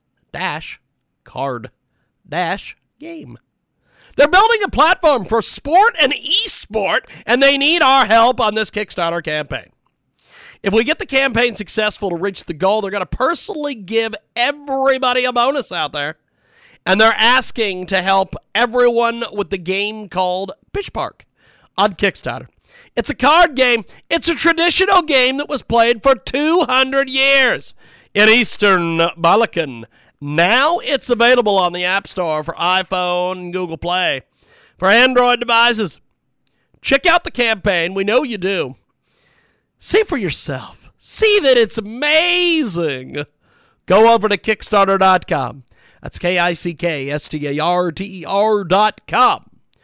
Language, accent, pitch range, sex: English, American, 185-270 Hz, male